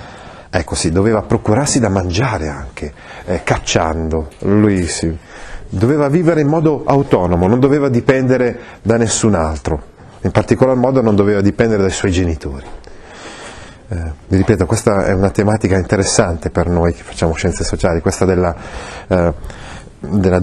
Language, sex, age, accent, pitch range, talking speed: Italian, male, 40-59, native, 90-120 Hz, 145 wpm